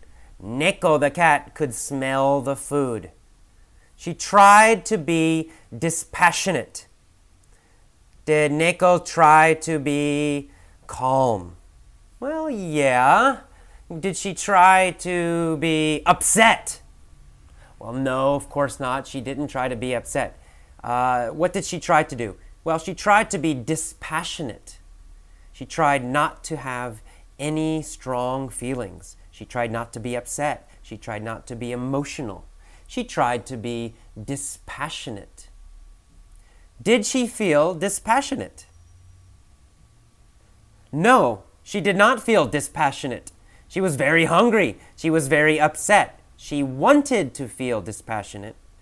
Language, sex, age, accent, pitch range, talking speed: English, male, 30-49, American, 100-165 Hz, 120 wpm